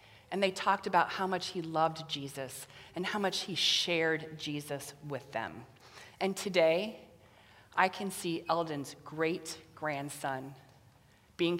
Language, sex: English, female